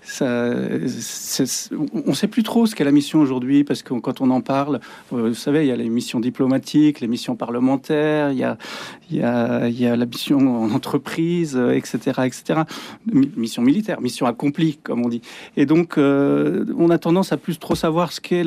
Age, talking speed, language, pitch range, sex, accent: 40-59, 200 wpm, French, 125-160 Hz, male, French